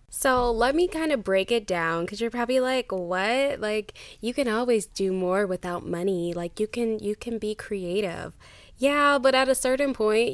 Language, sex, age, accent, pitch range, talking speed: English, female, 10-29, American, 190-260 Hz, 195 wpm